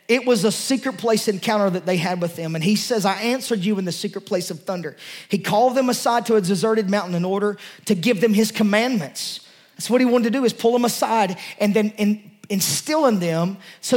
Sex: male